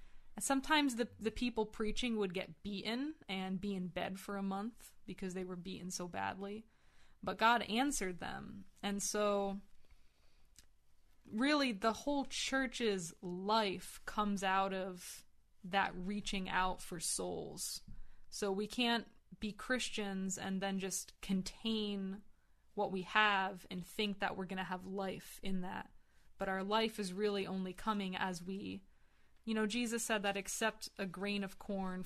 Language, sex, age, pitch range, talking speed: English, female, 20-39, 185-210 Hz, 150 wpm